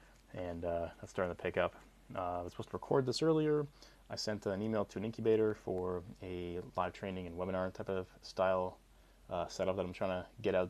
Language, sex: English, male